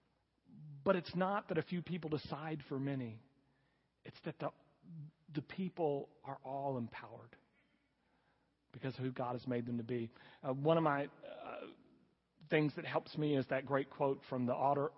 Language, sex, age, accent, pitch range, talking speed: English, male, 40-59, American, 135-160 Hz, 170 wpm